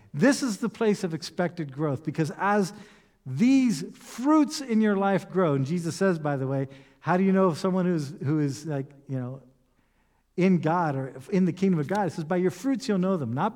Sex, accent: male, American